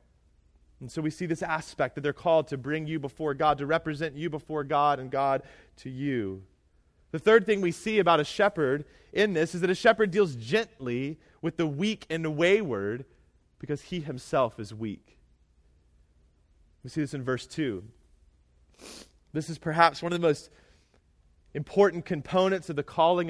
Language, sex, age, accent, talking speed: English, male, 30-49, American, 175 wpm